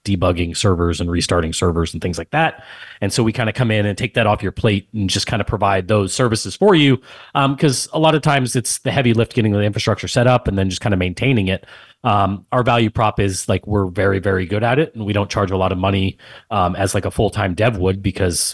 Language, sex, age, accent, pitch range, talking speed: English, male, 30-49, American, 95-120 Hz, 265 wpm